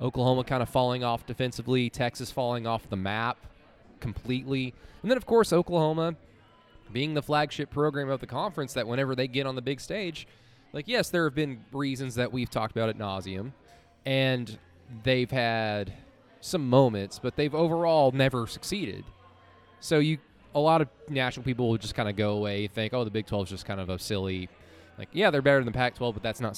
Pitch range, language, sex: 115-145 Hz, English, male